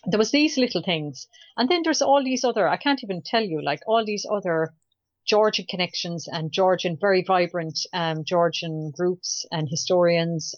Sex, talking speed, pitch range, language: female, 175 wpm, 155-190 Hz, English